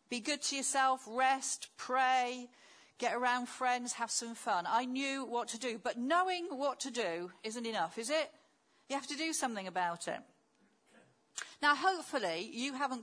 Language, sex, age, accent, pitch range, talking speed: English, female, 50-69, British, 210-300 Hz, 170 wpm